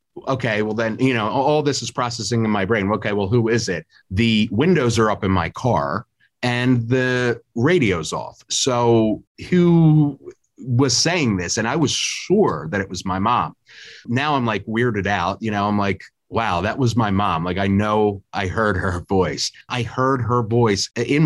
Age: 30-49